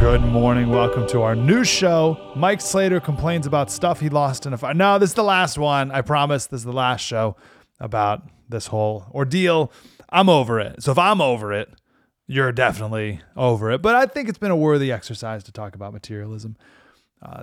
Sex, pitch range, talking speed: male, 115-145 Hz, 205 wpm